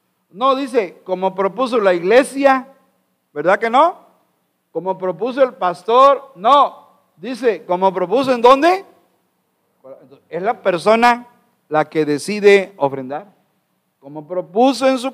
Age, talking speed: 50-69, 120 wpm